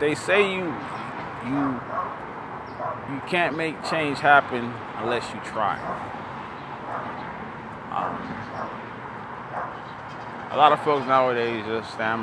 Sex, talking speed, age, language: male, 100 wpm, 20-39, English